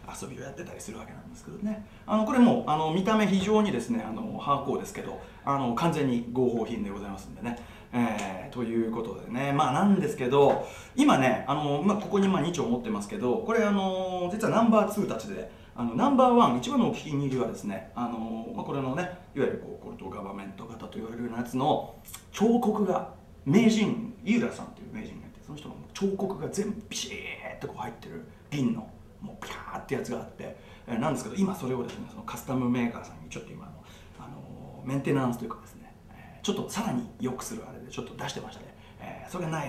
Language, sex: Japanese, male